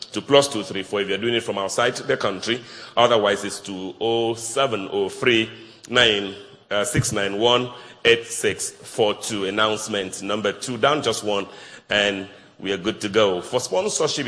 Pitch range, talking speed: 100-125 Hz, 135 wpm